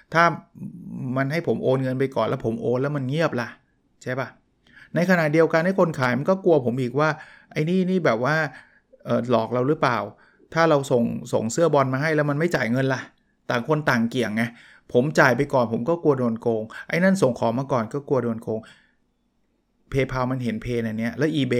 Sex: male